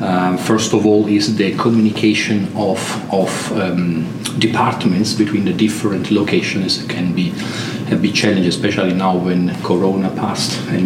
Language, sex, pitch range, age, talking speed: English, male, 95-110 Hz, 40-59, 145 wpm